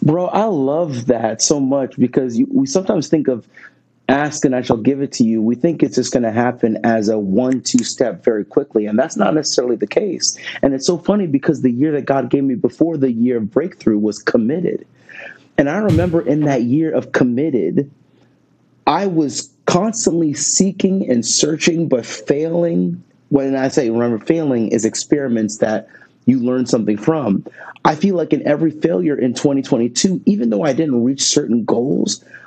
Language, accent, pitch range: English, American, 120-165 Hz